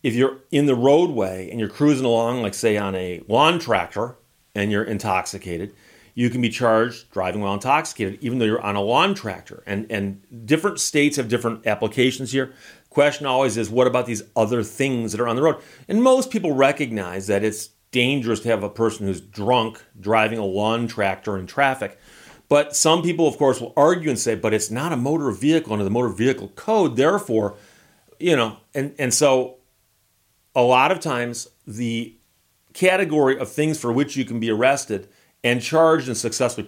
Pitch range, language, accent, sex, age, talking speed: 105-140 Hz, English, American, male, 40-59, 190 wpm